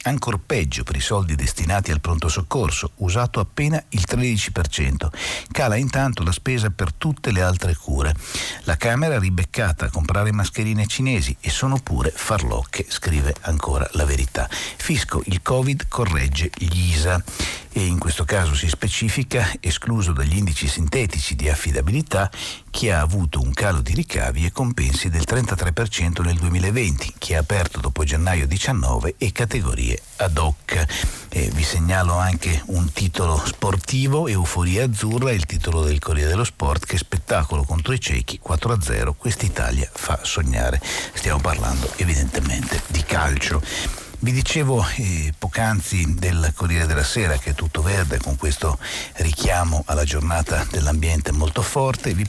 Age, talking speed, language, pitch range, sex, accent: 60-79, 150 wpm, Italian, 75-100 Hz, male, native